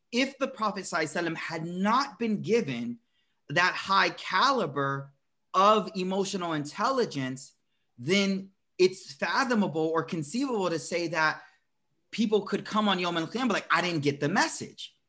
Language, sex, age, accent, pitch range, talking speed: English, male, 30-49, American, 155-210 Hz, 140 wpm